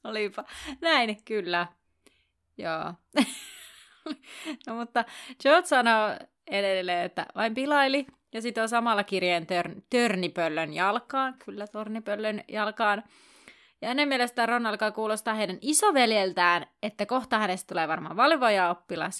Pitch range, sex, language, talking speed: 185-245 Hz, female, Finnish, 115 wpm